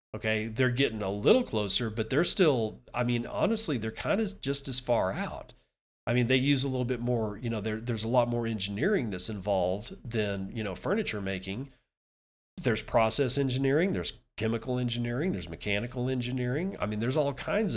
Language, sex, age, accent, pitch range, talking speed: English, male, 40-59, American, 95-125 Hz, 185 wpm